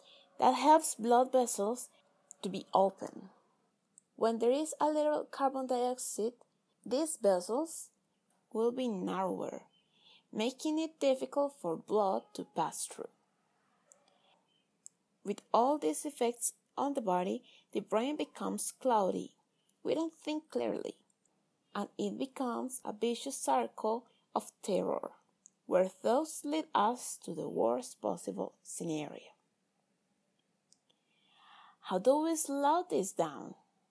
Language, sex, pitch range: English, female, 205-275 Hz